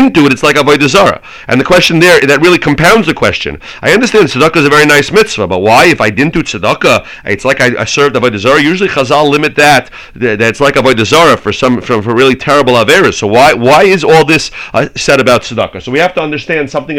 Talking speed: 245 wpm